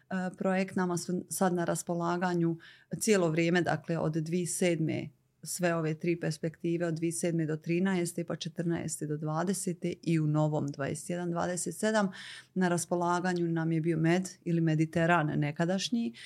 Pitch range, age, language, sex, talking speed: 160-180 Hz, 30-49, Croatian, female, 150 wpm